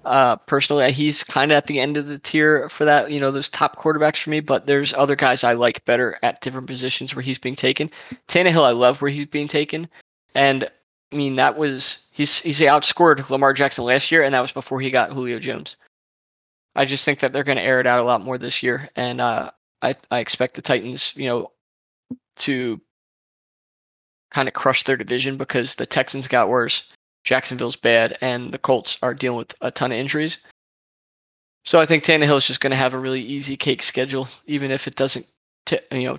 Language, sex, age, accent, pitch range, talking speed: English, male, 20-39, American, 130-145 Hz, 215 wpm